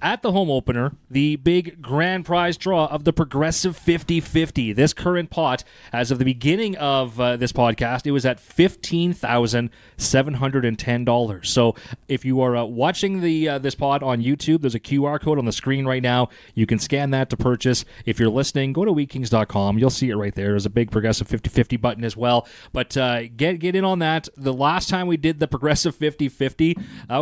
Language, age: English, 30-49